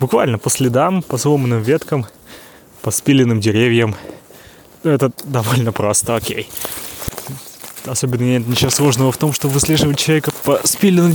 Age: 20-39